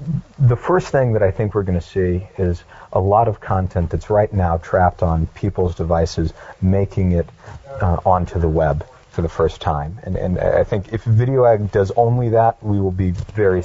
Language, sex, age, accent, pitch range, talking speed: English, male, 40-59, American, 90-115 Hz, 200 wpm